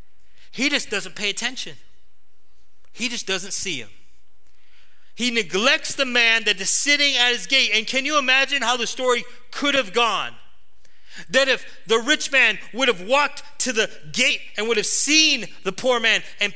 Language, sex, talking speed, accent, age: English, male, 180 wpm, American, 30-49